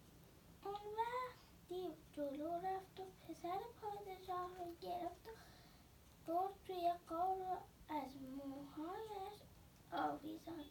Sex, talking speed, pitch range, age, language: female, 90 wpm, 315-400 Hz, 20-39, Persian